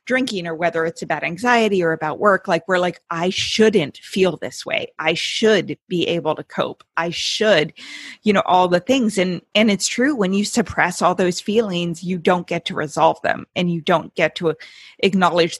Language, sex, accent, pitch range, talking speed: English, female, American, 170-205 Hz, 200 wpm